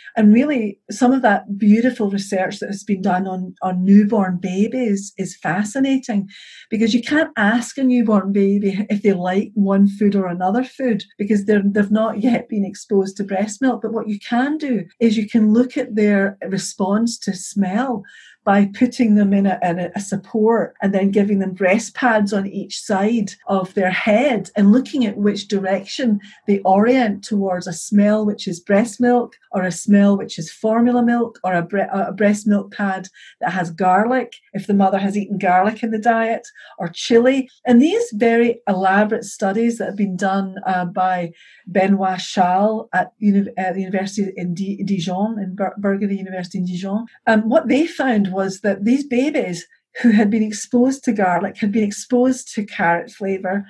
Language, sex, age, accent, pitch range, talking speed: English, female, 50-69, British, 195-225 Hz, 180 wpm